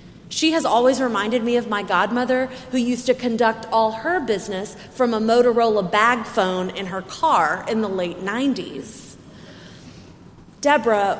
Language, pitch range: English, 190-250 Hz